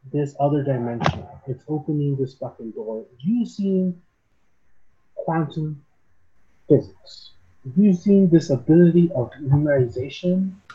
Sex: male